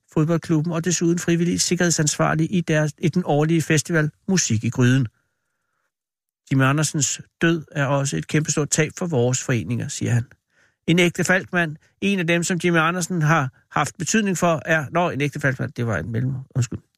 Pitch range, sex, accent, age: 150-185 Hz, male, native, 60-79